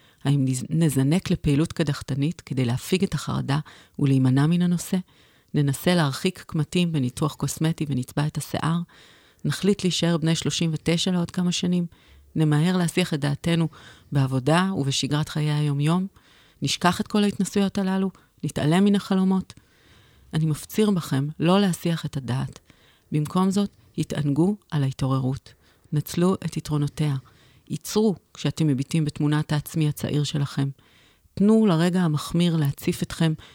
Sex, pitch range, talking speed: female, 140-170 Hz, 125 wpm